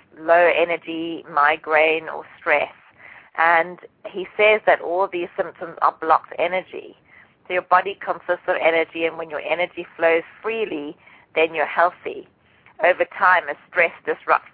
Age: 30-49